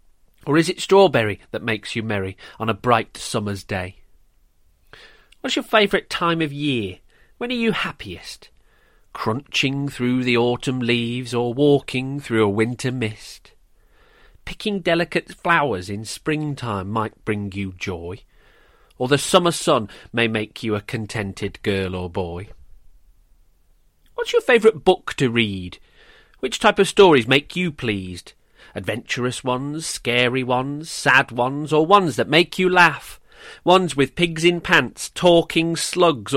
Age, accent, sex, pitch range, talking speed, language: 40-59, British, male, 105-175 Hz, 145 wpm, English